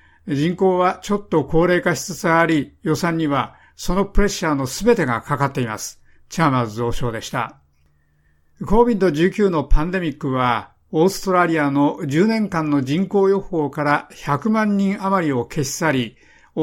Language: Japanese